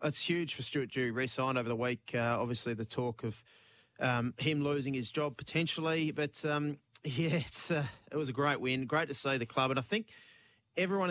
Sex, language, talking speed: male, English, 205 wpm